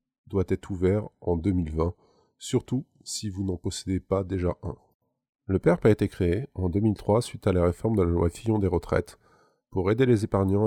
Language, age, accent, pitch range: French, 20-39, French, 95-115 Hz